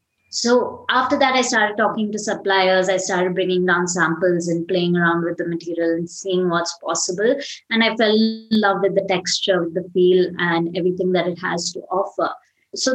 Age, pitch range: 20-39, 180-225 Hz